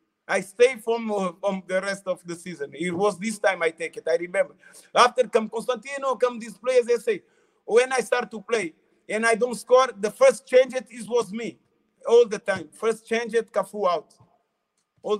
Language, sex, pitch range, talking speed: Greek, male, 195-255 Hz, 200 wpm